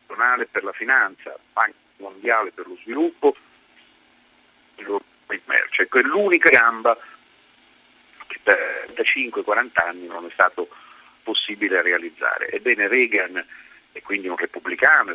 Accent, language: native, Italian